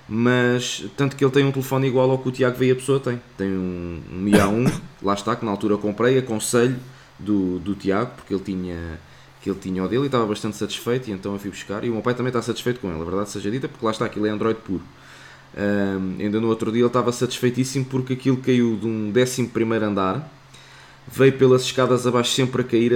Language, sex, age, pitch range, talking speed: Portuguese, male, 20-39, 105-130 Hz, 240 wpm